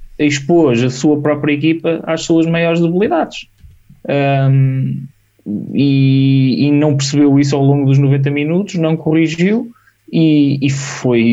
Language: Portuguese